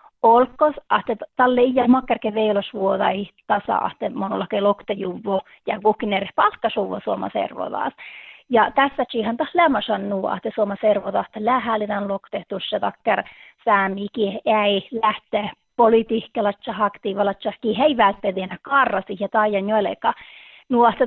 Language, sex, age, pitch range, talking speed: Finnish, female, 30-49, 205-250 Hz, 110 wpm